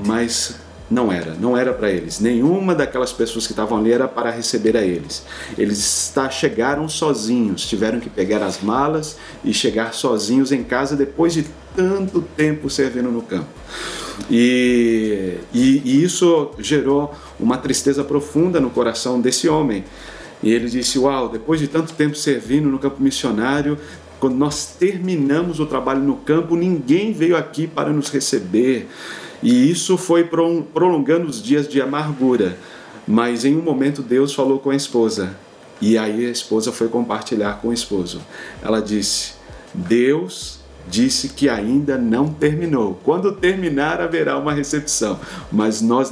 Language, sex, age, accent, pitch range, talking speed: Portuguese, male, 40-59, Brazilian, 115-155 Hz, 150 wpm